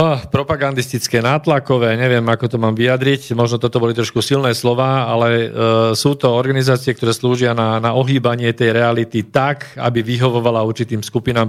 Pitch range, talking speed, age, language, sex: 115-135 Hz, 160 wpm, 40-59, Slovak, male